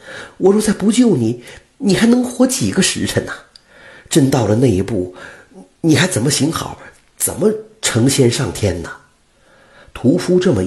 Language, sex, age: Chinese, male, 50-69